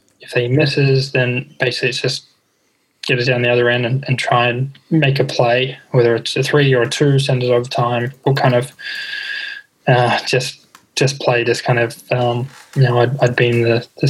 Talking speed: 215 wpm